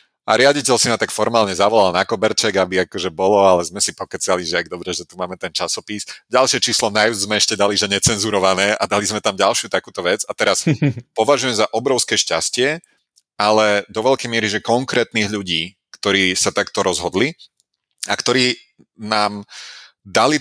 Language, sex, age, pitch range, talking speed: Slovak, male, 40-59, 95-115 Hz, 175 wpm